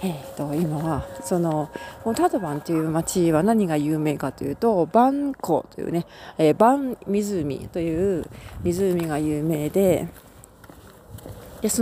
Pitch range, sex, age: 150-200 Hz, female, 40-59